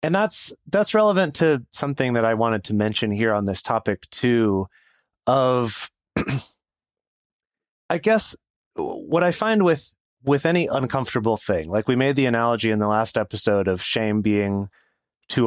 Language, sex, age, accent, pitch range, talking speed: English, male, 30-49, American, 105-130 Hz, 155 wpm